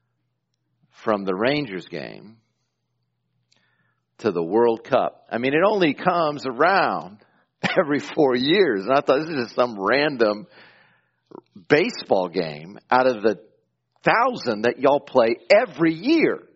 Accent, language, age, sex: American, English, 50-69, male